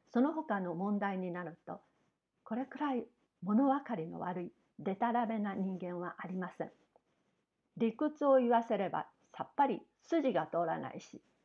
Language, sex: Japanese, female